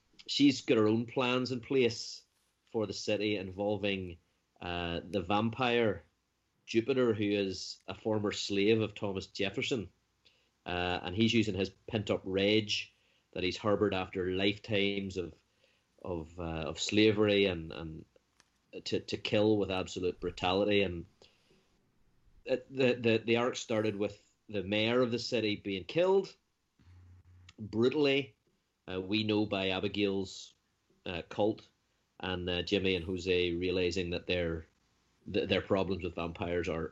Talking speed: 135 wpm